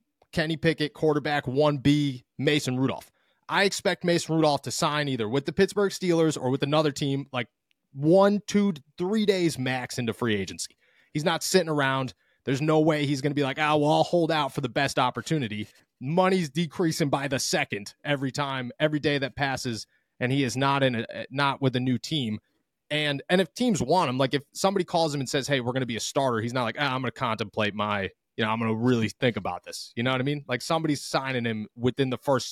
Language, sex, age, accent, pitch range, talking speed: English, male, 30-49, American, 125-160 Hz, 225 wpm